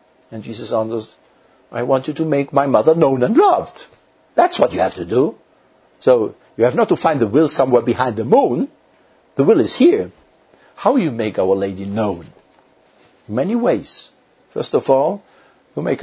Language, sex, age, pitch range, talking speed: English, male, 60-79, 115-150 Hz, 180 wpm